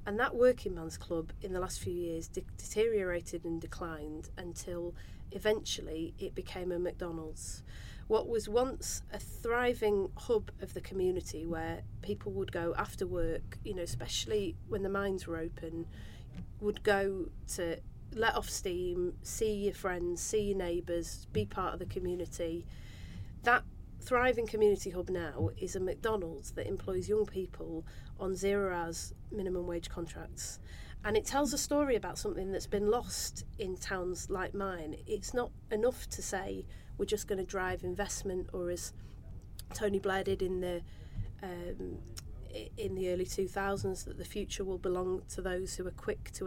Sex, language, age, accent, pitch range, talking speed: female, English, 40-59, British, 165-200 Hz, 165 wpm